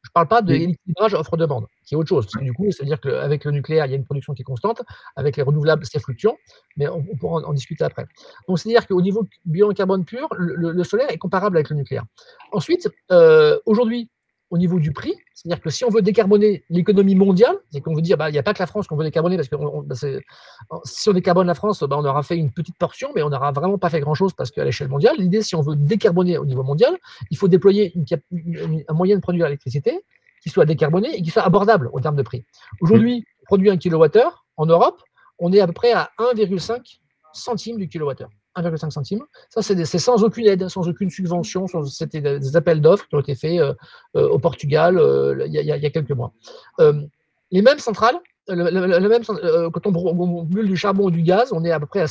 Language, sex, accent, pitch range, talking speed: French, male, French, 155-210 Hz, 240 wpm